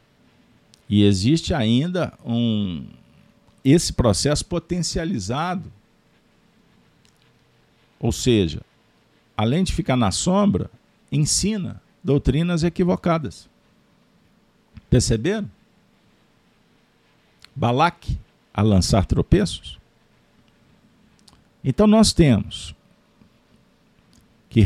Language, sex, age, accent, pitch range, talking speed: Portuguese, male, 50-69, Brazilian, 105-165 Hz, 60 wpm